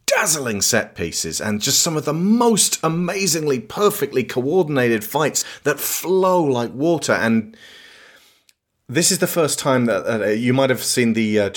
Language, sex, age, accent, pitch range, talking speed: English, male, 30-49, British, 100-135 Hz, 160 wpm